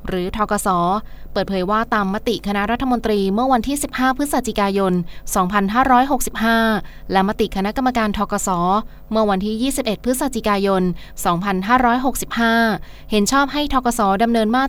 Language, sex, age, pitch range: Thai, female, 20-39, 195-240 Hz